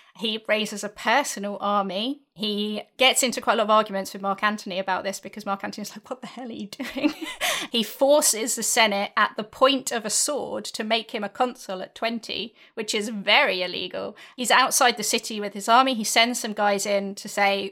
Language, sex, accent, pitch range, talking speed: English, female, British, 205-235 Hz, 215 wpm